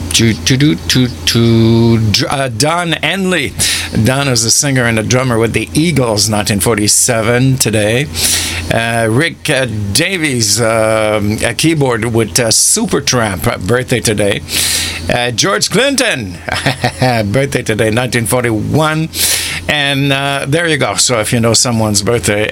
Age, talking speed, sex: 60-79, 115 wpm, male